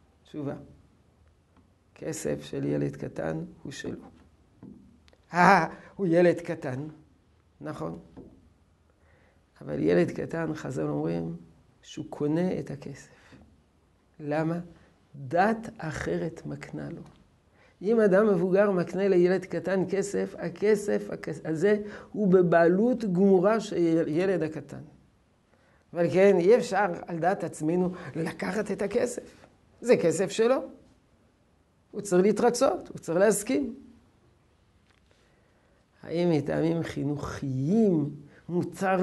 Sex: male